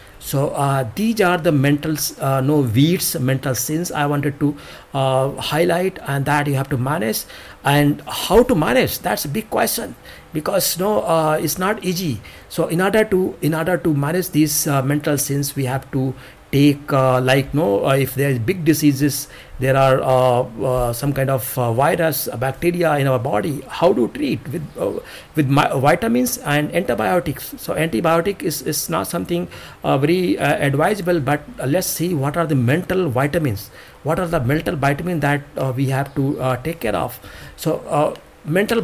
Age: 60-79